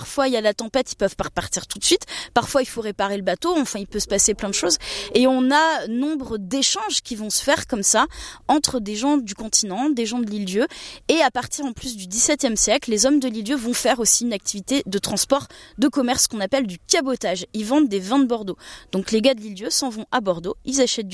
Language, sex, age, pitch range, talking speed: French, female, 20-39, 205-275 Hz, 255 wpm